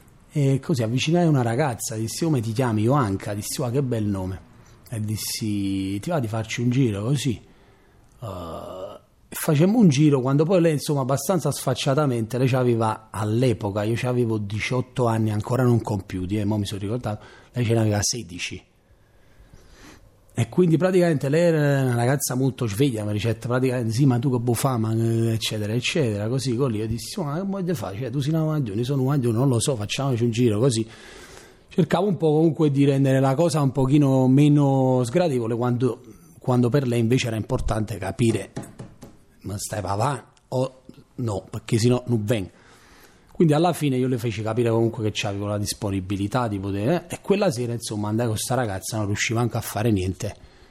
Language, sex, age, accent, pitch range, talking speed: Italian, male, 30-49, native, 105-135 Hz, 190 wpm